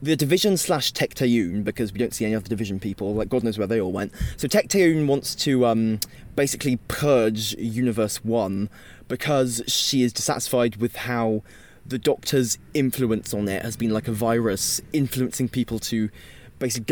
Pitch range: 110-130 Hz